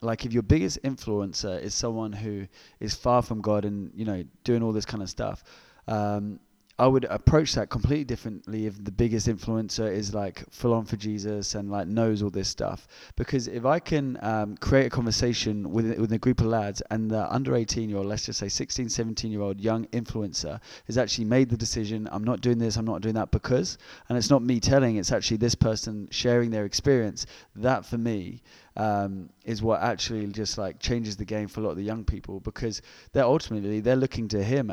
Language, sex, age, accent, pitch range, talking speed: English, male, 20-39, British, 105-120 Hz, 210 wpm